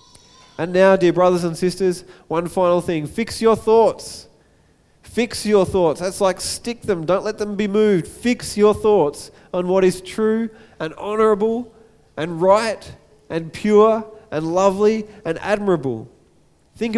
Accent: Australian